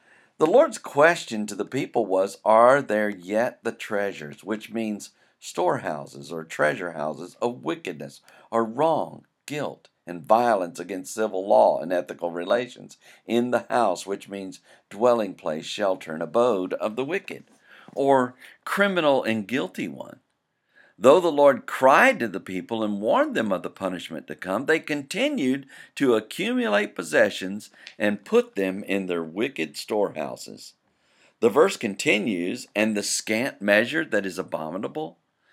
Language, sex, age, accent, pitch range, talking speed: English, male, 50-69, American, 95-135 Hz, 145 wpm